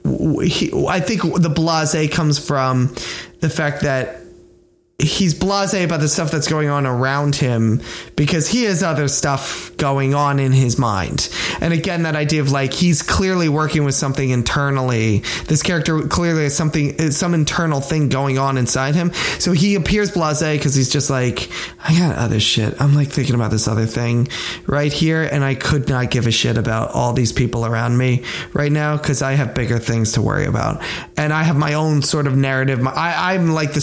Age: 20-39